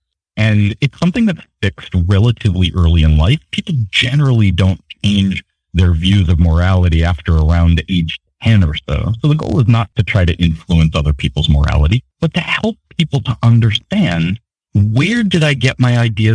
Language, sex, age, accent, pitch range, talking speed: English, male, 40-59, American, 85-130 Hz, 175 wpm